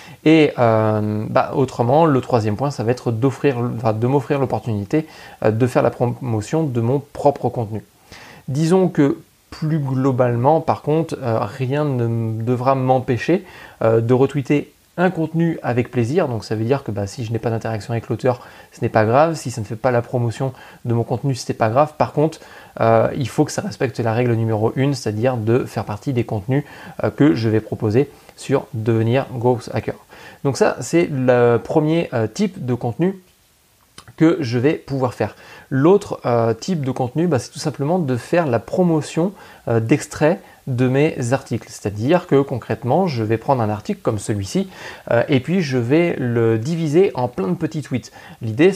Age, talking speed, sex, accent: 20-39, 175 wpm, male, French